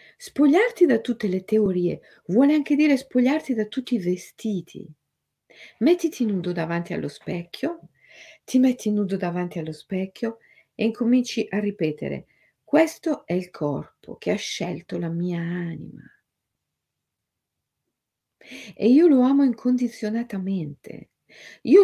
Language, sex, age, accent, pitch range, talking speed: Italian, female, 50-69, native, 175-285 Hz, 120 wpm